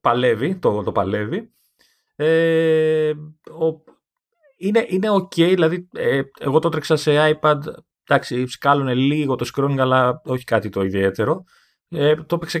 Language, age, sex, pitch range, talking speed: Greek, 30-49, male, 110-170 Hz, 145 wpm